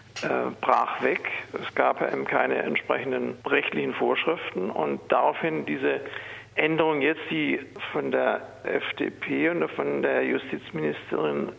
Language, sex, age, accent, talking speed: German, male, 50-69, German, 115 wpm